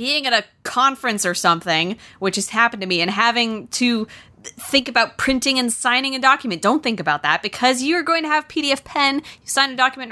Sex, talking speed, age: female, 220 wpm, 20-39